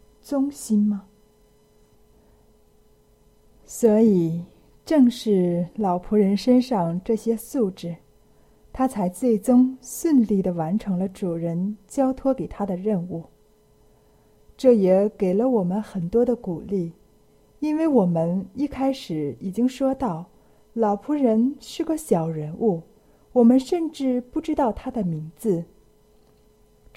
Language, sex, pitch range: Chinese, female, 180-250 Hz